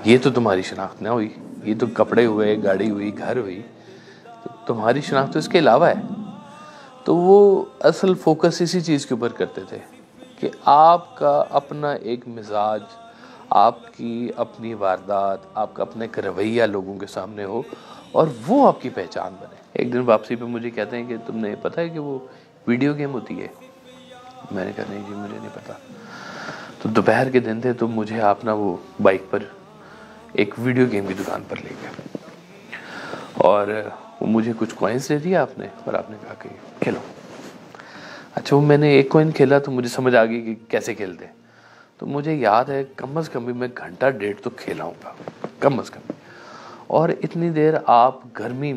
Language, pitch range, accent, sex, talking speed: English, 110-145 Hz, Indian, male, 165 wpm